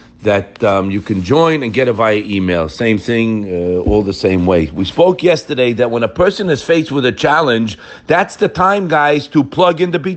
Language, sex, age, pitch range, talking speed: English, male, 50-69, 130-180 Hz, 225 wpm